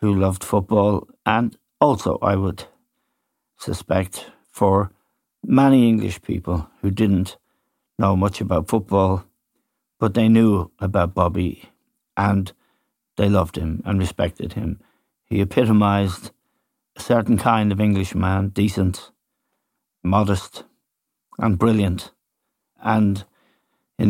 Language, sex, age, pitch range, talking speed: English, male, 60-79, 95-110 Hz, 110 wpm